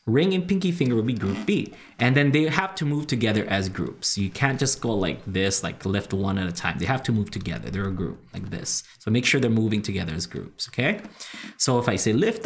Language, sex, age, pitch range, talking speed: English, male, 20-39, 95-140 Hz, 255 wpm